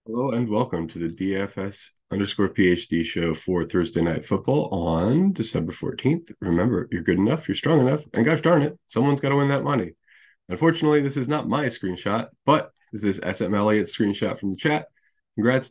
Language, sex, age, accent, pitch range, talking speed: English, male, 20-39, American, 90-125 Hz, 185 wpm